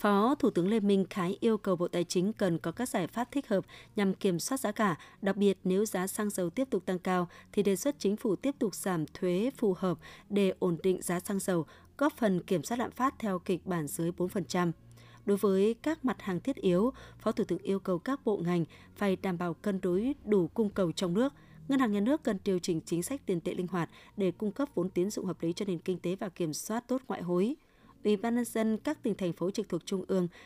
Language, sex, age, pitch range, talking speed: Vietnamese, female, 20-39, 180-220 Hz, 255 wpm